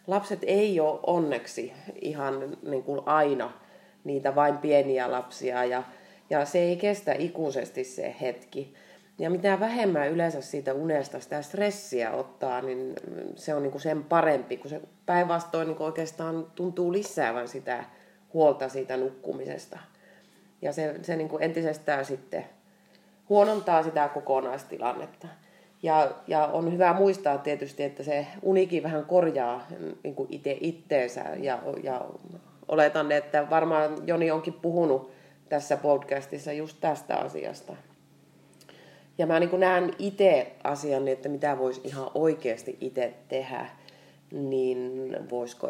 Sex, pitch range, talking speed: female, 135-175 Hz, 130 wpm